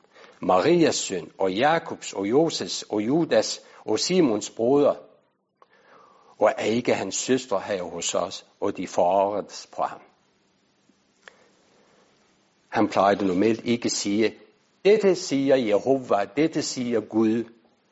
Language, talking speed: Danish, 115 wpm